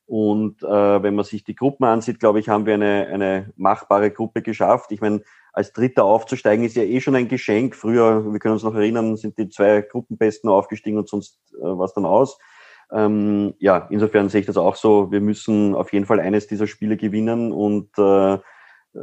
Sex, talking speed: male, 200 wpm